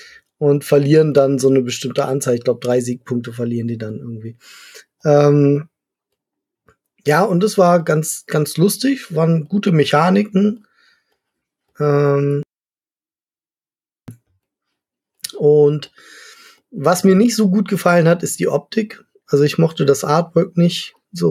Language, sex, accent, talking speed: German, male, German, 125 wpm